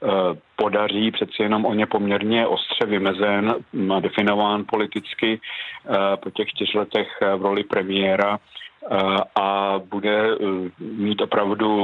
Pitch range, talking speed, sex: 95-105 Hz, 100 wpm, male